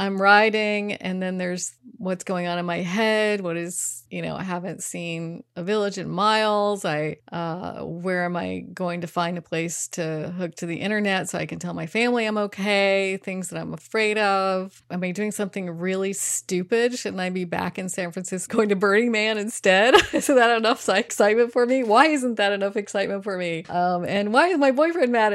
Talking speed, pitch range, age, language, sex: 210 wpm, 175-210 Hz, 30-49, English, female